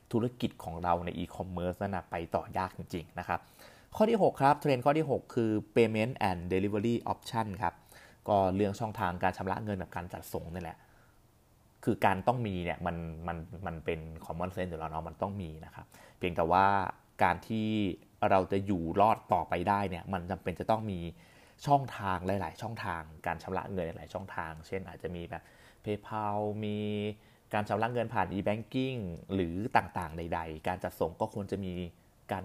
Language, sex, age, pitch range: Thai, male, 20-39, 90-110 Hz